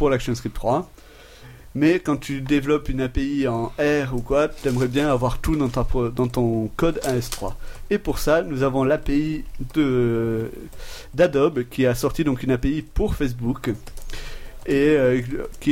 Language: French